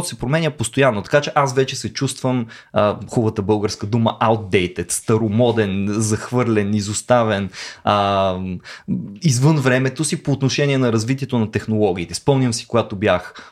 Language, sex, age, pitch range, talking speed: Bulgarian, male, 20-39, 105-135 Hz, 140 wpm